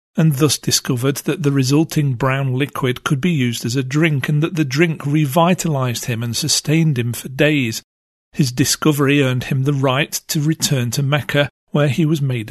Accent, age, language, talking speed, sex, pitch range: British, 40-59, English, 185 wpm, male, 130-155 Hz